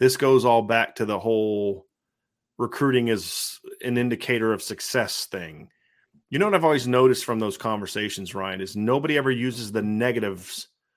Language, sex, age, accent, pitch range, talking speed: English, male, 30-49, American, 110-135 Hz, 165 wpm